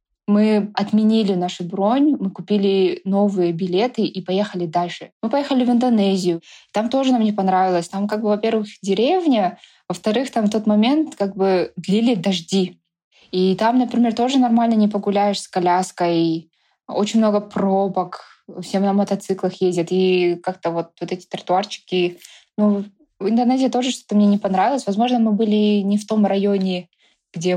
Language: Russian